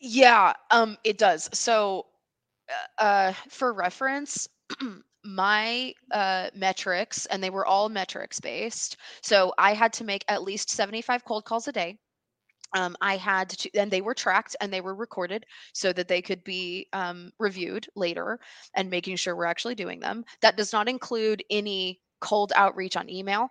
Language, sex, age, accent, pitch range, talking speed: English, female, 20-39, American, 185-220 Hz, 165 wpm